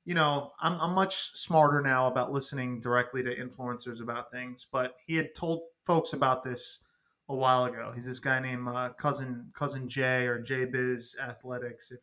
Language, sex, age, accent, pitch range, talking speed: English, male, 20-39, American, 130-160 Hz, 195 wpm